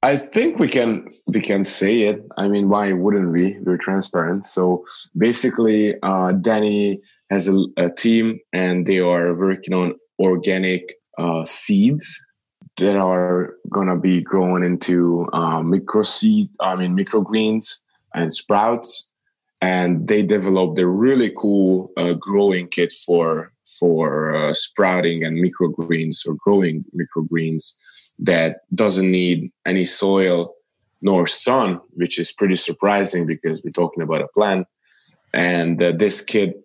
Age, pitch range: 20-39, 85-100 Hz